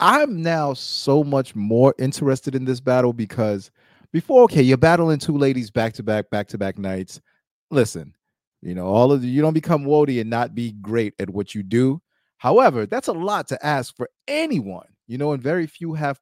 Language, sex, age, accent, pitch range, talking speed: English, male, 30-49, American, 115-155 Hz, 205 wpm